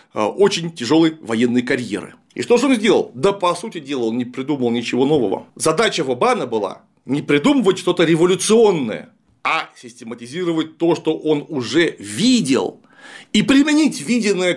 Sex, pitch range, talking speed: male, 135-200 Hz, 145 wpm